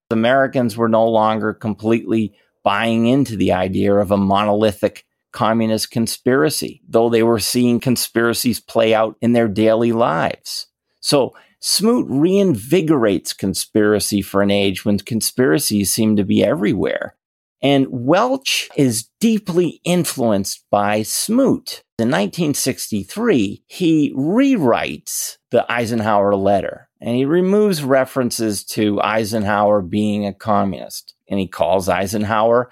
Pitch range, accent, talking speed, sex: 105-135 Hz, American, 120 wpm, male